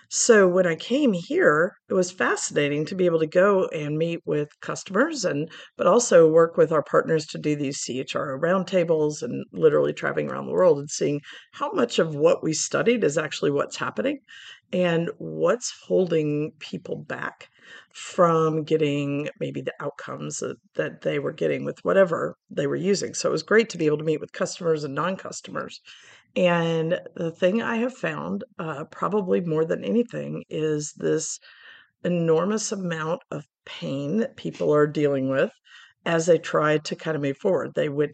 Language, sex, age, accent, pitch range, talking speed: English, female, 50-69, American, 150-190 Hz, 175 wpm